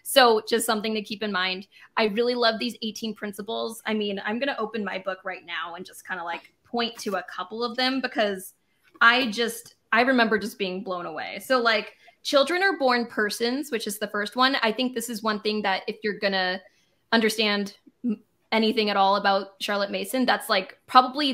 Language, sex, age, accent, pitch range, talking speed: English, female, 20-39, American, 205-245 Hz, 205 wpm